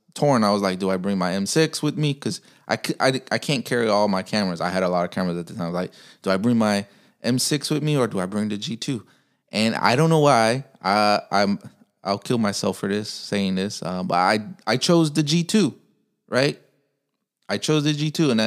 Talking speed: 235 wpm